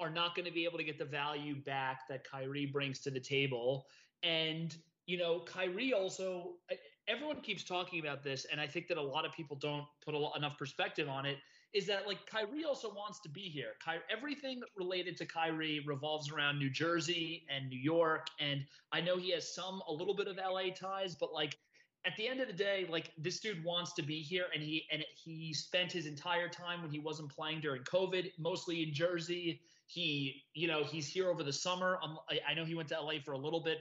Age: 30-49